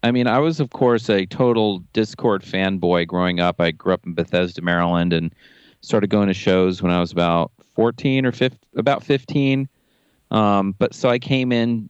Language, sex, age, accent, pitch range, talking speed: English, male, 30-49, American, 85-100 Hz, 185 wpm